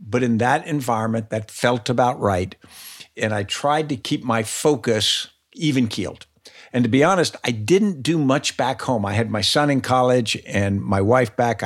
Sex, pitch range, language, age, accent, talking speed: male, 110-130 Hz, English, 60-79, American, 190 wpm